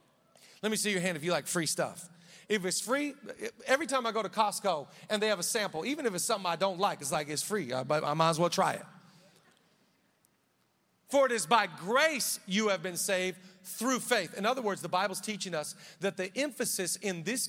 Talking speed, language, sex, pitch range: 220 wpm, English, male, 185-230 Hz